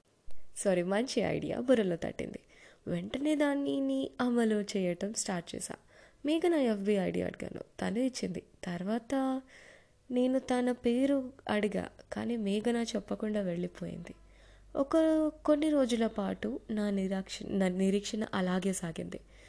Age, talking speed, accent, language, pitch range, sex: 20-39, 110 wpm, native, Telugu, 190-250 Hz, female